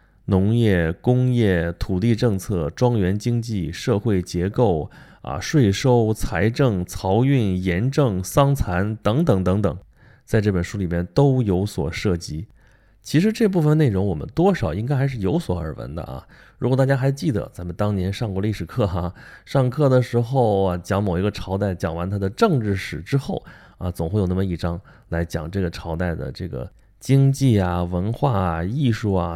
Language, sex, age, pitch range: Chinese, male, 20-39, 90-125 Hz